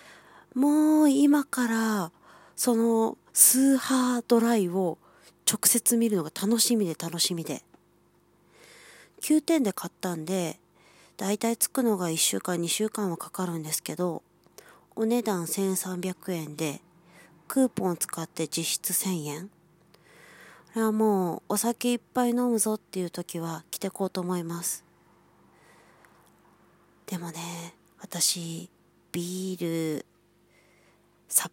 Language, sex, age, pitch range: Japanese, female, 40-59, 170-225 Hz